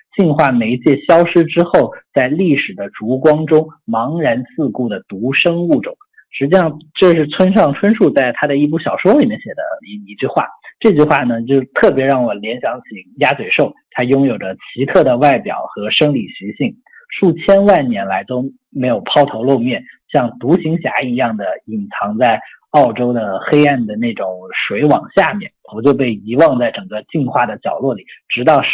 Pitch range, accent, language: 125-170 Hz, native, Chinese